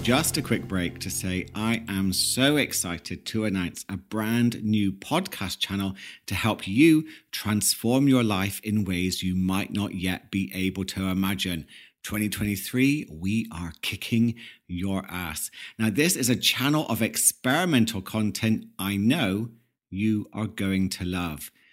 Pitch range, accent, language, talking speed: 95-125 Hz, British, English, 150 wpm